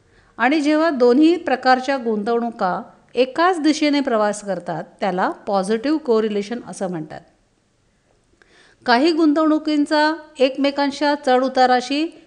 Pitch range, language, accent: 215-280 Hz, Marathi, native